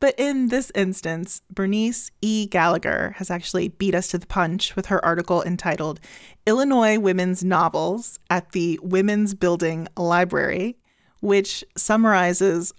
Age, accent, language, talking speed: 30-49, American, English, 130 wpm